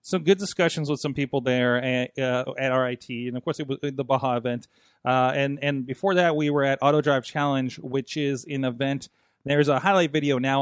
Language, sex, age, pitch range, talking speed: English, male, 30-49, 130-165 Hz, 220 wpm